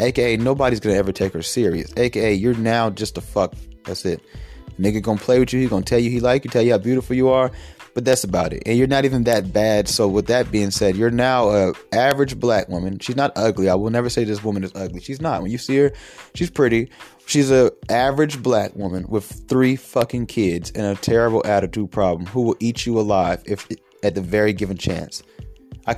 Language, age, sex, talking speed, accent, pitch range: English, 20-39, male, 230 wpm, American, 105-135 Hz